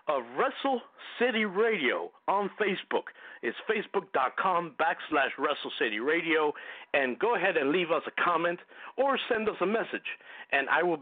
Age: 60-79